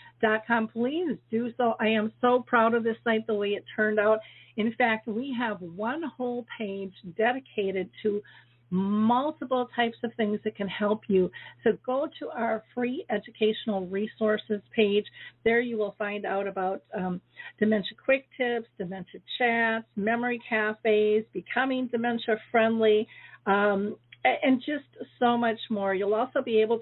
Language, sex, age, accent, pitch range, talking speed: English, female, 50-69, American, 200-235 Hz, 150 wpm